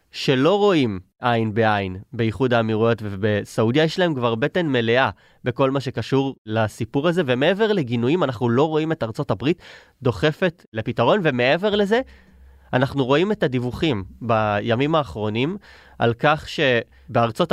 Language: Hebrew